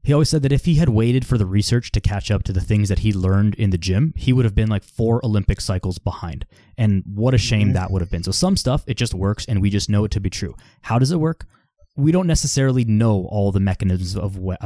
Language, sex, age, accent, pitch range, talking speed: English, male, 20-39, American, 100-120 Hz, 275 wpm